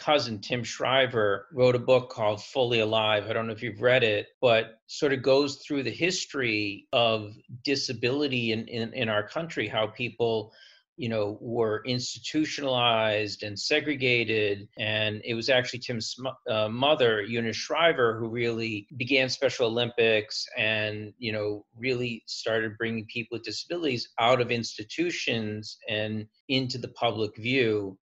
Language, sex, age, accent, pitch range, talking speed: English, male, 40-59, American, 110-130 Hz, 150 wpm